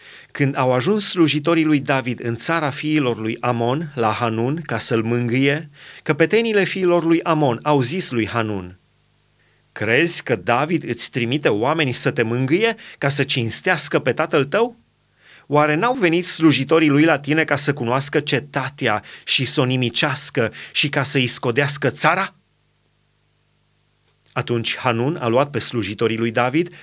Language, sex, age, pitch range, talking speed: Romanian, male, 30-49, 125-155 Hz, 150 wpm